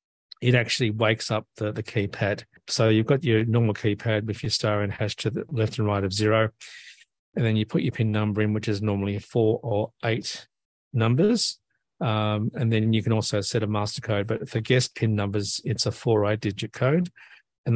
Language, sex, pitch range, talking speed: English, male, 105-120 Hz, 215 wpm